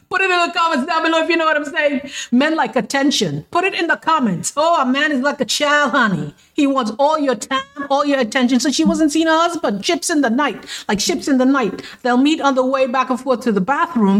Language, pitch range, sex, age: English, 210-290 Hz, female, 50-69